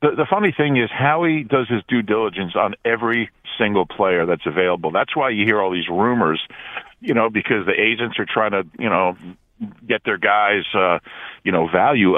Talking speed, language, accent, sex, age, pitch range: 195 wpm, English, American, male, 50-69, 95-115 Hz